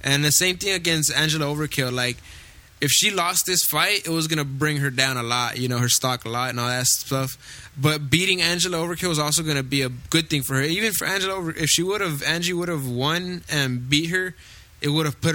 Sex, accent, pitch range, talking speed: male, American, 130-155 Hz, 245 wpm